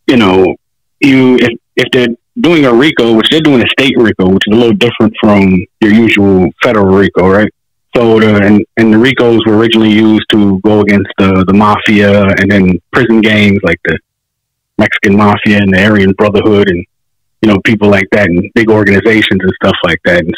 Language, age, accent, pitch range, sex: Japanese, 30-49, American, 100-120 Hz, male